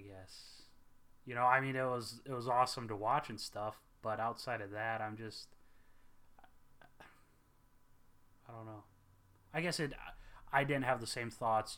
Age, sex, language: 20-39, male, English